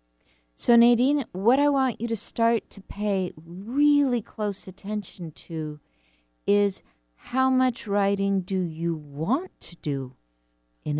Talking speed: 130 wpm